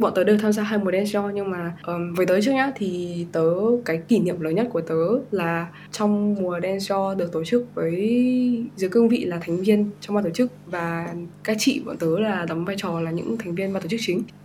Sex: female